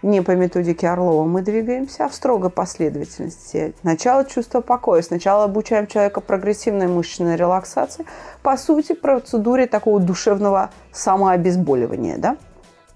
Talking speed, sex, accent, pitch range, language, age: 115 wpm, female, native, 180-230 Hz, Russian, 30-49